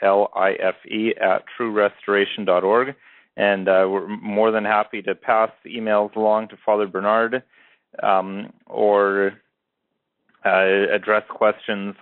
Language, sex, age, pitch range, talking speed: English, male, 40-59, 100-115 Hz, 105 wpm